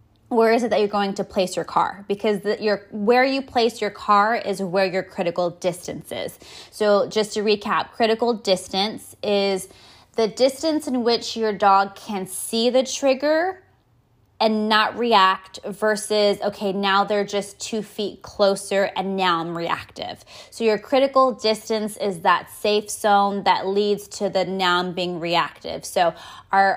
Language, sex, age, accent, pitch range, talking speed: English, female, 20-39, American, 190-225 Hz, 165 wpm